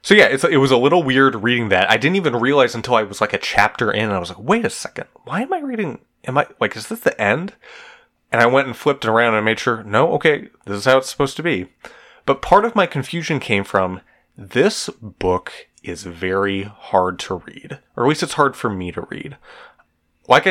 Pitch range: 95-140 Hz